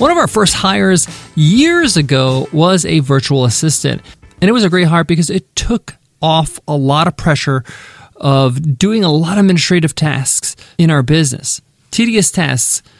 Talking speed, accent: 170 wpm, American